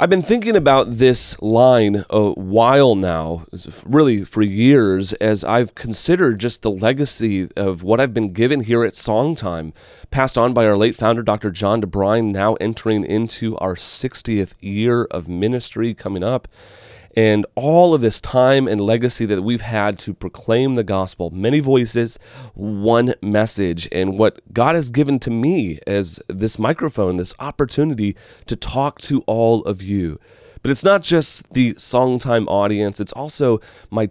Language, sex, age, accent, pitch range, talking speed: English, male, 30-49, American, 100-130 Hz, 160 wpm